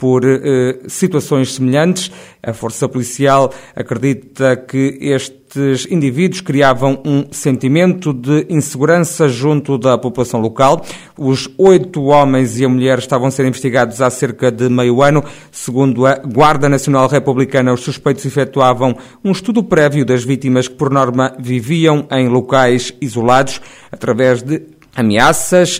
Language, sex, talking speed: Portuguese, male, 135 wpm